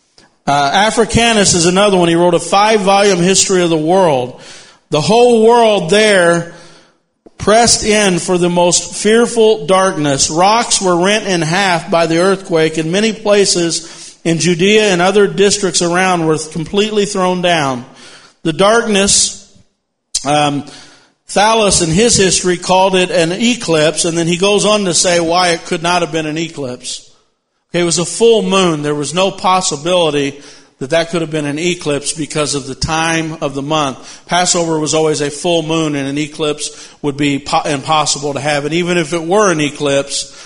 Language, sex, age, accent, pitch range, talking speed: English, male, 50-69, American, 150-190 Hz, 170 wpm